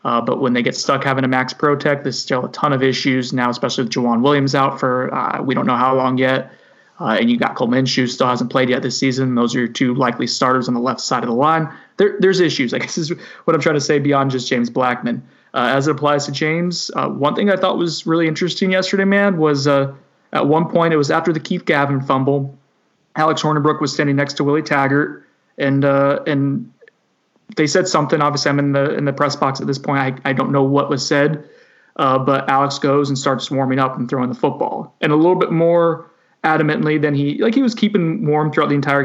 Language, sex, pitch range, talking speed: English, male, 135-160 Hz, 245 wpm